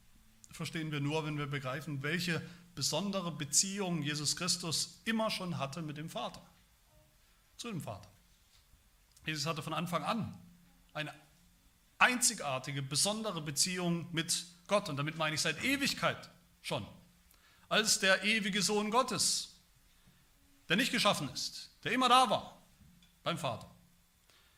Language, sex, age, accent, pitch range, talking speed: German, male, 40-59, German, 145-195 Hz, 130 wpm